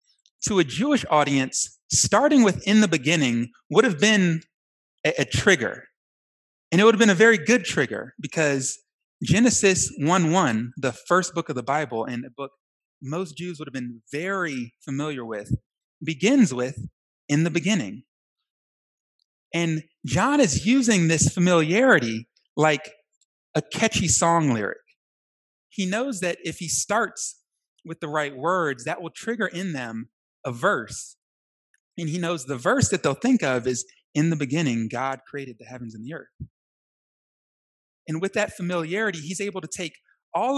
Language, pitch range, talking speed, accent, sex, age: English, 140-200 Hz, 160 wpm, American, male, 30-49